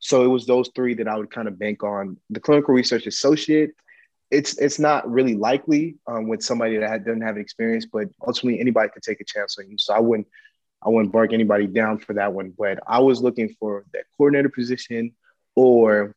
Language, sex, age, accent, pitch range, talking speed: English, male, 20-39, American, 110-130 Hz, 210 wpm